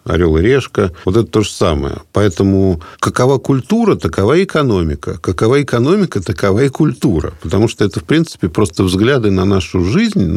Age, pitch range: 50-69, 90-120 Hz